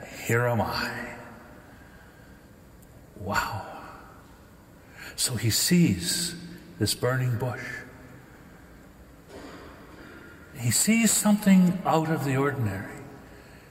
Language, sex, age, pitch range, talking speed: English, male, 60-79, 105-160 Hz, 75 wpm